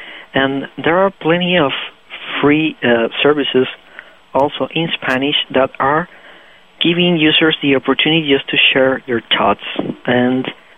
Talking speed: 130 wpm